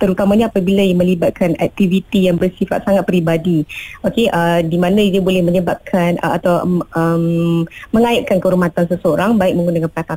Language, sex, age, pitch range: Malay, female, 20-39, 175-210 Hz